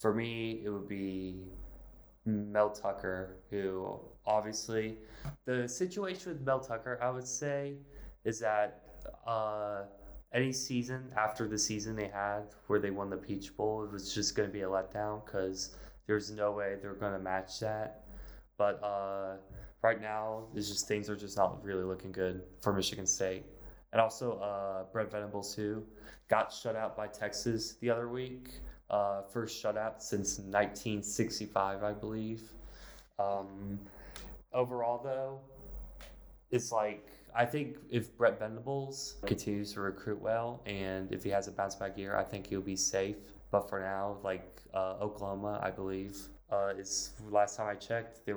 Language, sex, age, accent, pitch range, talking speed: English, male, 20-39, American, 100-110 Hz, 160 wpm